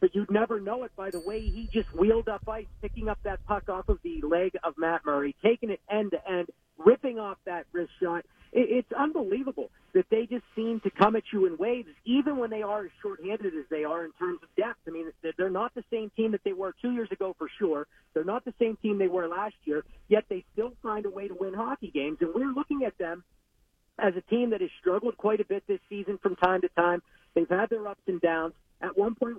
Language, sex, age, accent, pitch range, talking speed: English, male, 40-59, American, 180-225 Hz, 245 wpm